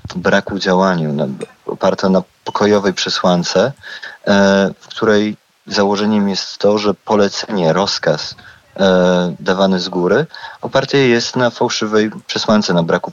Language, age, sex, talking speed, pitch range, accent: Polish, 40-59, male, 115 wpm, 85-105 Hz, native